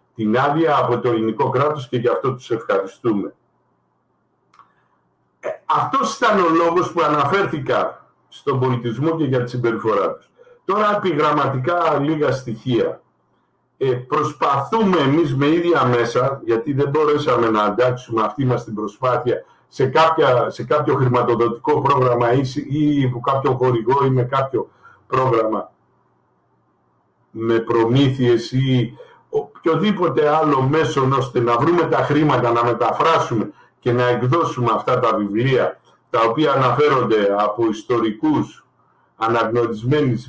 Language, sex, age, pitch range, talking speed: Greek, male, 60-79, 120-155 Hz, 120 wpm